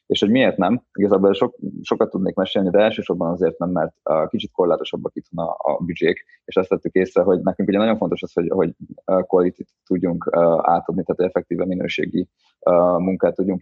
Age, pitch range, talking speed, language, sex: 20-39, 85-110 Hz, 170 wpm, Hungarian, male